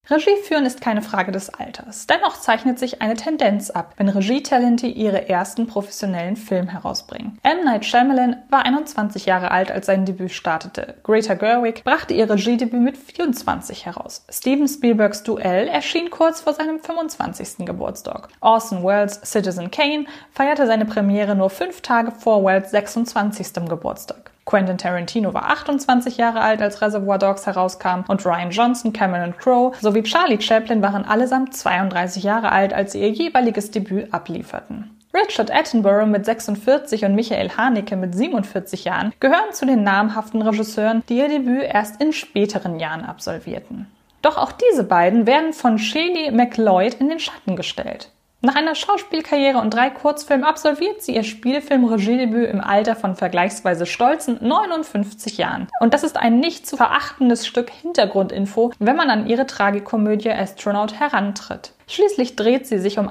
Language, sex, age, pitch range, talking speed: German, female, 20-39, 200-260 Hz, 155 wpm